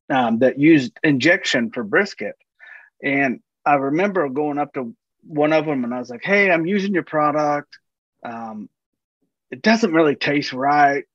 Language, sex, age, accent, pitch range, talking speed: English, male, 30-49, American, 130-180 Hz, 160 wpm